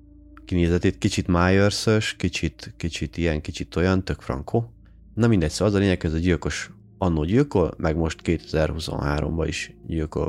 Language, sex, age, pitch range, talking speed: Hungarian, male, 30-49, 75-95 Hz, 145 wpm